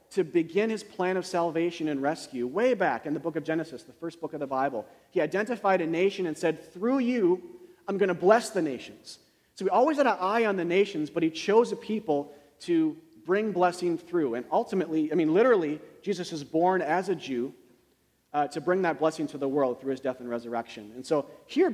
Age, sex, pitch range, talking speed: 40-59, male, 155-210 Hz, 220 wpm